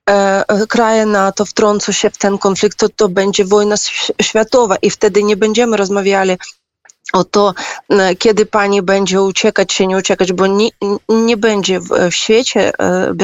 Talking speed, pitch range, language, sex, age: 150 wpm, 190-215 Hz, Polish, female, 20-39